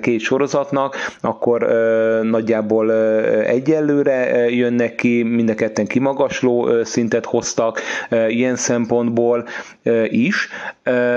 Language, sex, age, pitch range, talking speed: Hungarian, male, 30-49, 110-120 Hz, 115 wpm